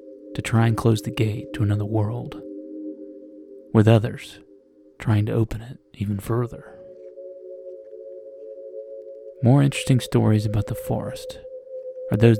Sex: male